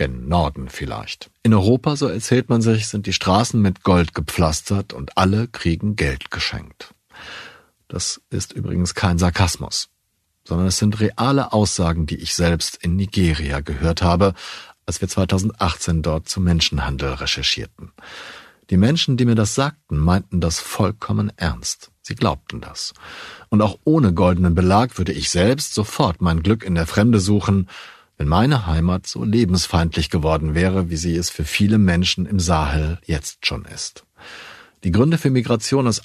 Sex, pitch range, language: male, 85-110 Hz, German